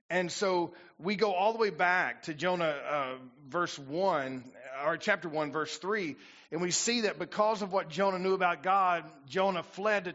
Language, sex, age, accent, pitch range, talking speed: English, male, 40-59, American, 175-210 Hz, 190 wpm